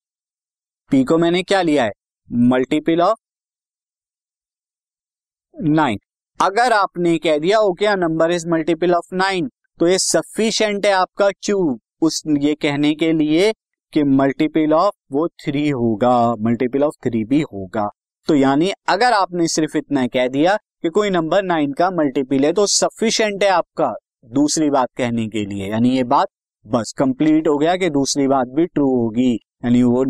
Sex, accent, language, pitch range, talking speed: male, native, Hindi, 135-190 Hz, 160 wpm